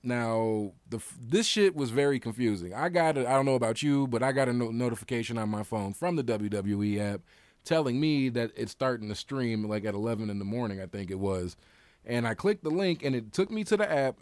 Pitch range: 100-125 Hz